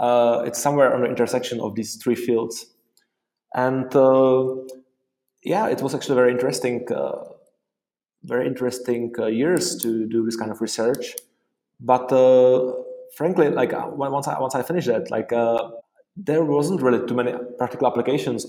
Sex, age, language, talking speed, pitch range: male, 20-39, English, 160 wpm, 115-140 Hz